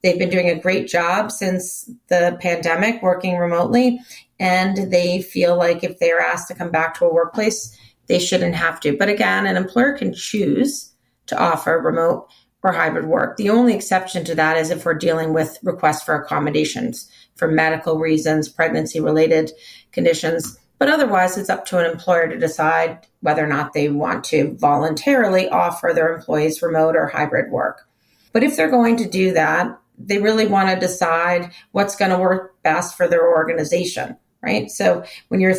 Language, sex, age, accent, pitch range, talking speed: English, female, 30-49, American, 165-220 Hz, 180 wpm